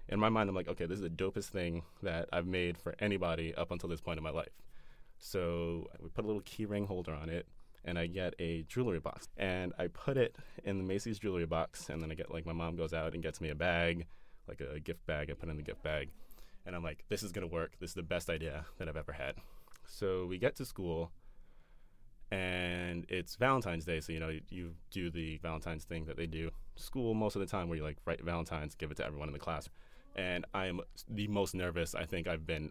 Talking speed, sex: 250 wpm, male